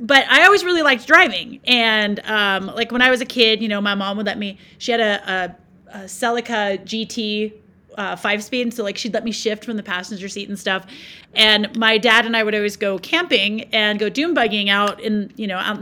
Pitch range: 205-250 Hz